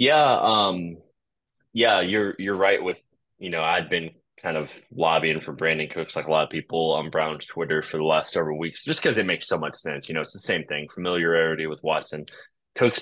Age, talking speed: 20-39, 215 wpm